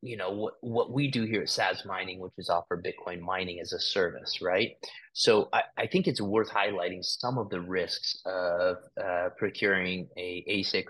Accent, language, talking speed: American, English, 200 wpm